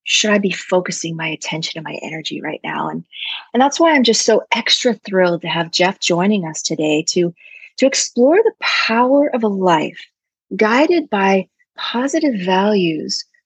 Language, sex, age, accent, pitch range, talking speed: English, female, 30-49, American, 170-220 Hz, 170 wpm